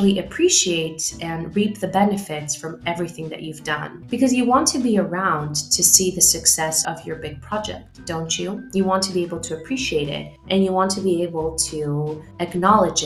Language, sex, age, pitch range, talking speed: English, female, 20-39, 160-200 Hz, 195 wpm